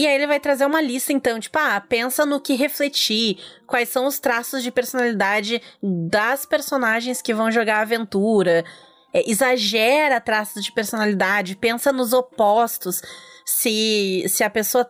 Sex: female